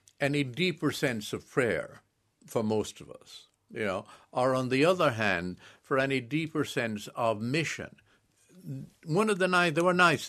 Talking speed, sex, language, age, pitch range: 170 wpm, male, English, 60-79, 105-150 Hz